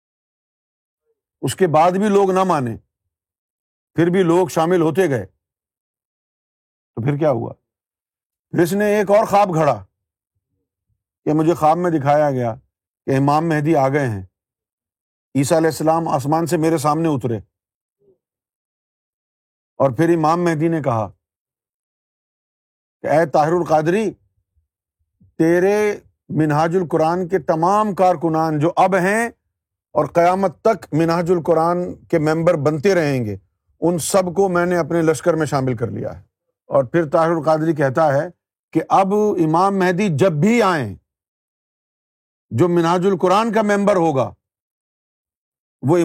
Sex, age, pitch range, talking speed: male, 50-69, 120-180 Hz, 135 wpm